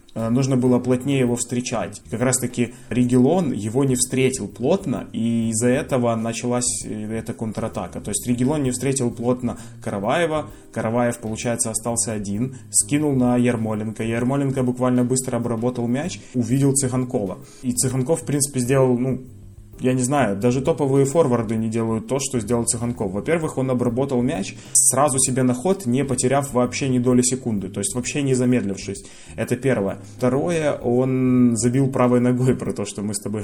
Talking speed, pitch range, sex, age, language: 160 wpm, 115-130 Hz, male, 20-39, Ukrainian